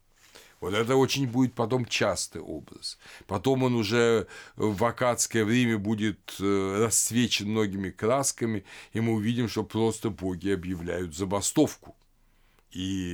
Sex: male